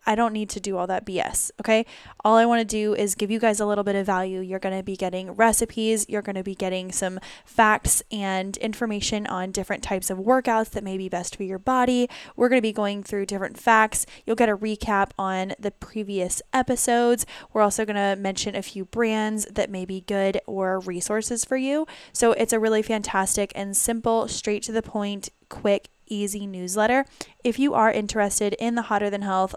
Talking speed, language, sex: 205 wpm, English, female